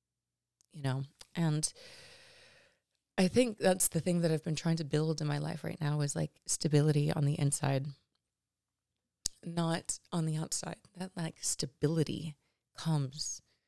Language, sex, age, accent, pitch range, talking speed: English, female, 30-49, American, 135-170 Hz, 145 wpm